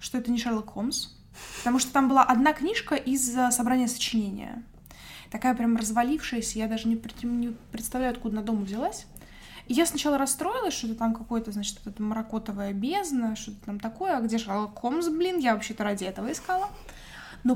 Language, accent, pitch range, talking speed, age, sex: Russian, native, 220-265 Hz, 180 wpm, 20-39, female